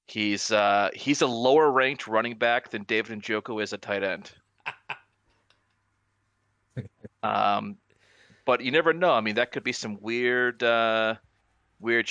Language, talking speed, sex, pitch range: English, 145 wpm, male, 100-115 Hz